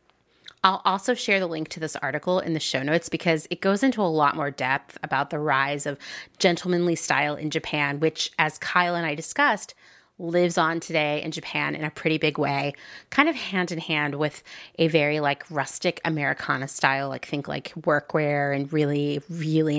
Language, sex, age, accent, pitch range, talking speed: English, female, 30-49, American, 150-180 Hz, 190 wpm